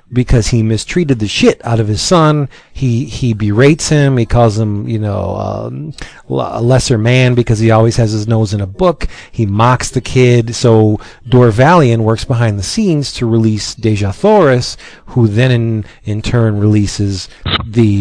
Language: English